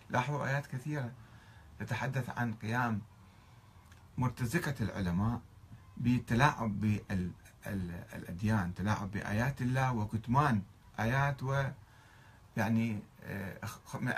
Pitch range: 100-130 Hz